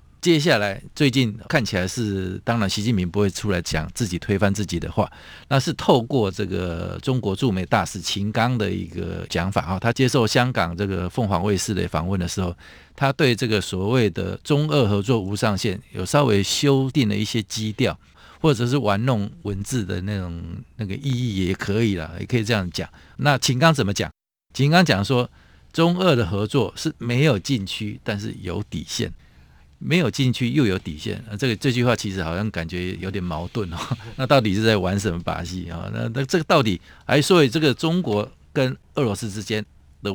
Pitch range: 90-120 Hz